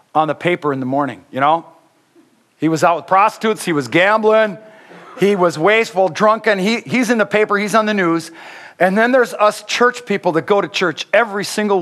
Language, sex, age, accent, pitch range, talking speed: English, male, 50-69, American, 130-185 Hz, 210 wpm